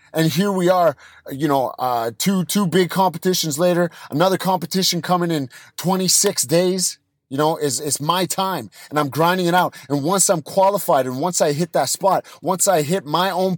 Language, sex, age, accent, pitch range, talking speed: English, male, 30-49, American, 140-185 Hz, 195 wpm